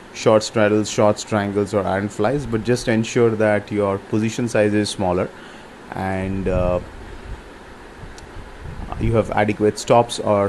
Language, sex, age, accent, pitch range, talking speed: English, male, 30-49, Indian, 100-110 Hz, 130 wpm